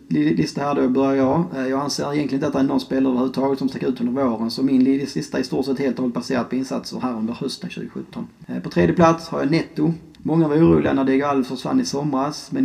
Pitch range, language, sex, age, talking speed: 125-165 Hz, Swedish, male, 30-49, 240 wpm